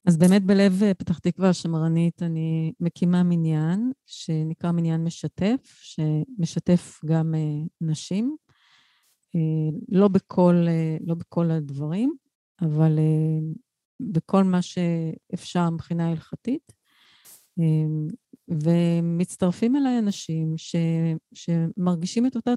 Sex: female